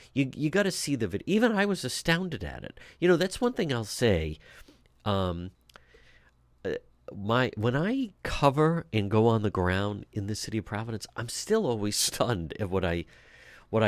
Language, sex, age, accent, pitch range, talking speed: English, male, 50-69, American, 105-150 Hz, 185 wpm